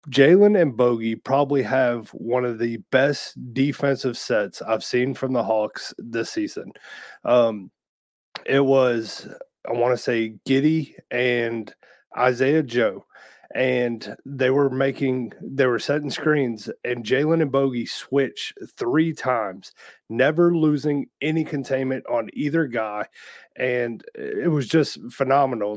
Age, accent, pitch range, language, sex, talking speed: 30-49, American, 115-135 Hz, English, male, 130 wpm